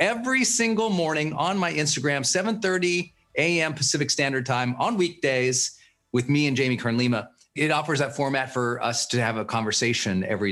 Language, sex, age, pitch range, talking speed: English, male, 40-59, 125-170 Hz, 170 wpm